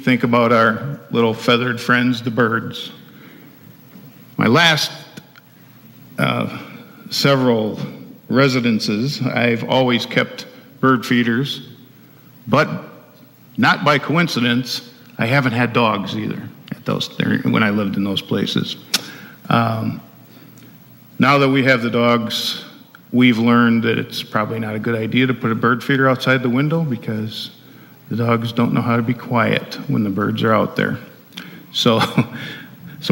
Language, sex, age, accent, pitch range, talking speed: English, male, 50-69, American, 115-130 Hz, 140 wpm